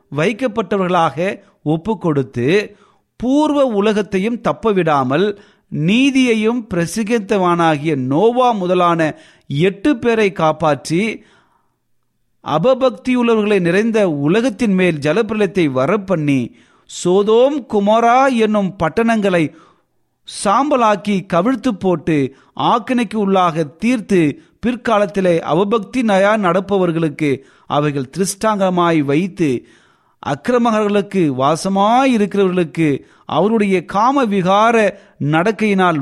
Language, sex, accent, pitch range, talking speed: Tamil, male, native, 155-220 Hz, 30 wpm